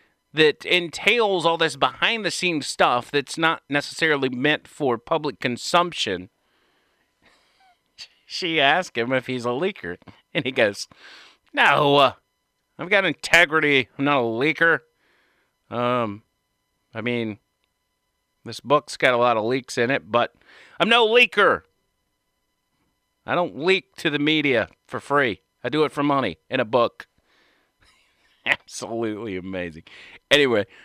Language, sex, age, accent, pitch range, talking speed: English, male, 40-59, American, 115-160 Hz, 130 wpm